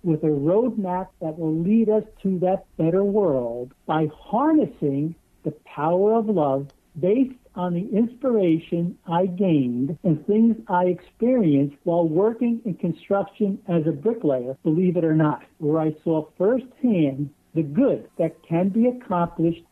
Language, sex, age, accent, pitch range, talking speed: English, male, 60-79, American, 155-205 Hz, 145 wpm